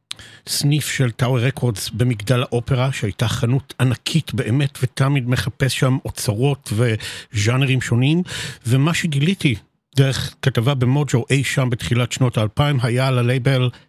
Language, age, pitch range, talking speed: Hebrew, 50-69, 120-145 Hz, 120 wpm